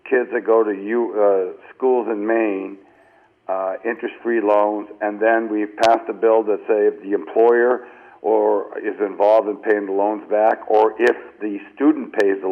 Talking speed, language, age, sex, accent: 175 wpm, English, 60-79, male, American